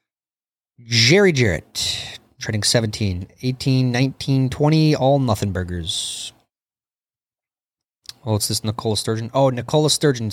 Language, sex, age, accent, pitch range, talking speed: English, male, 30-49, American, 110-140 Hz, 105 wpm